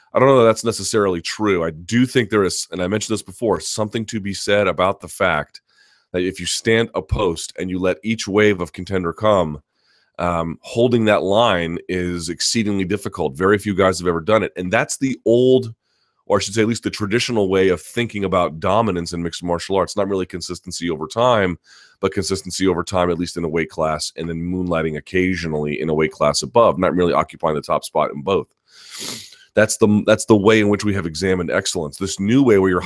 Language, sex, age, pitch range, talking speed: English, male, 30-49, 85-110 Hz, 220 wpm